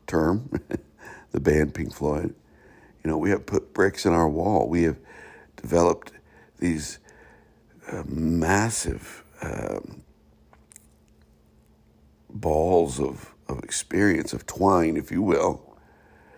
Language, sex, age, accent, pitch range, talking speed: English, male, 60-79, American, 75-90 Hz, 110 wpm